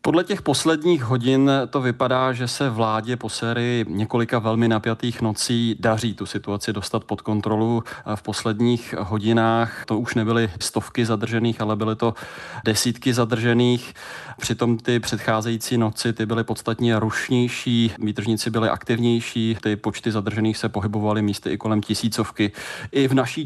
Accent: native